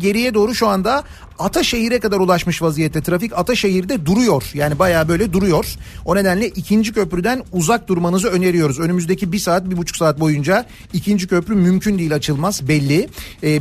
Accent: native